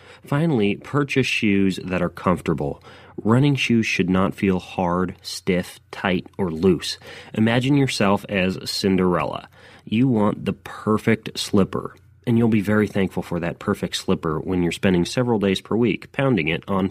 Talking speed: 155 wpm